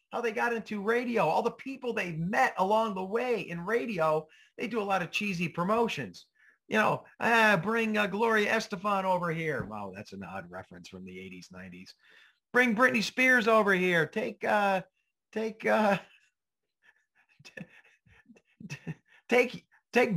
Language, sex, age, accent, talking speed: English, male, 40-59, American, 135 wpm